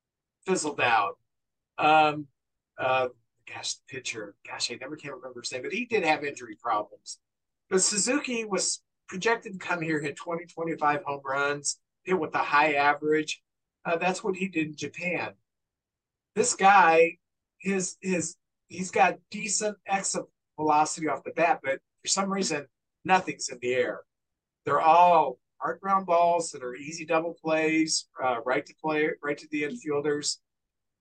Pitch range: 145-185 Hz